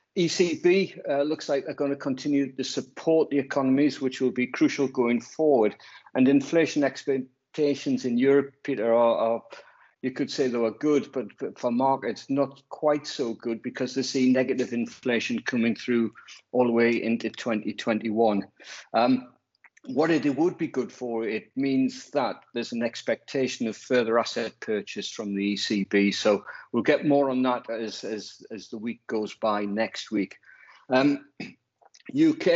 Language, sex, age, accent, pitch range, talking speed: English, male, 60-79, British, 120-145 Hz, 165 wpm